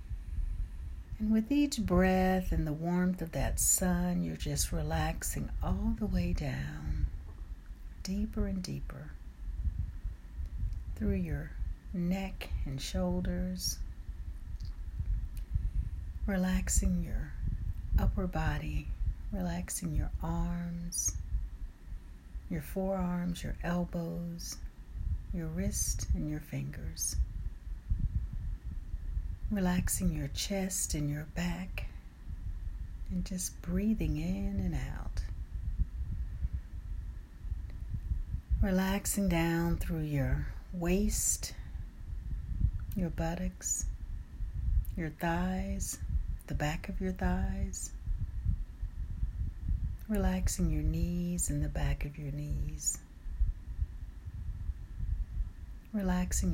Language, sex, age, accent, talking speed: English, female, 60-79, American, 80 wpm